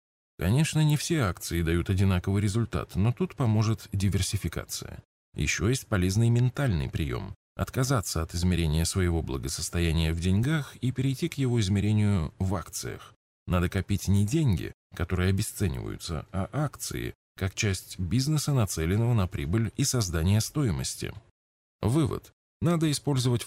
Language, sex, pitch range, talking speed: Russian, male, 90-120 Hz, 130 wpm